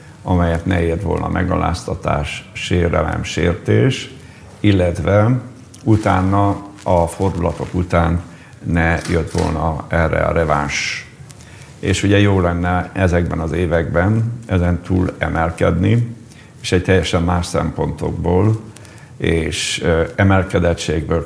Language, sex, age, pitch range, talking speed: Hungarian, male, 50-69, 85-110 Hz, 100 wpm